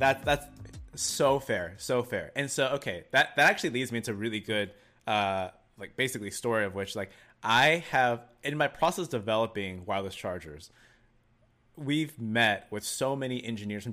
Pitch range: 100-125 Hz